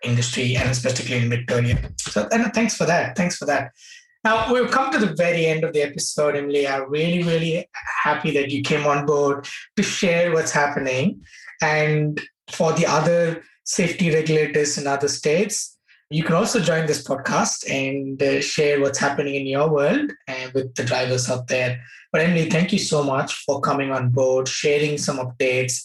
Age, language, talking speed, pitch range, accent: 20-39, English, 180 wpm, 135-175 Hz, Indian